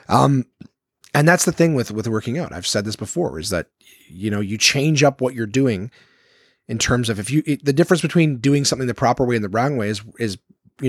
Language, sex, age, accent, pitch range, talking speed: English, male, 40-59, American, 105-135 Hz, 240 wpm